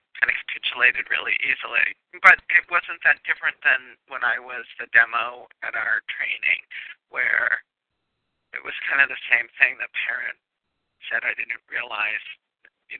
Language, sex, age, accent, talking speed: English, male, 50-69, American, 155 wpm